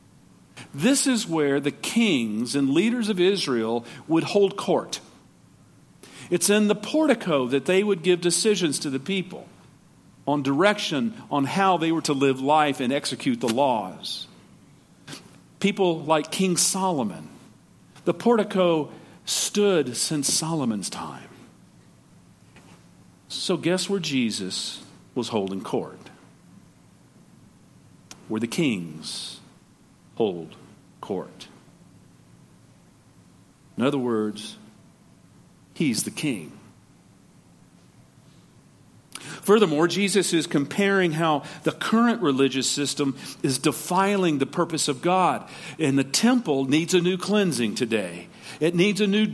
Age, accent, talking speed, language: 50-69, American, 110 wpm, English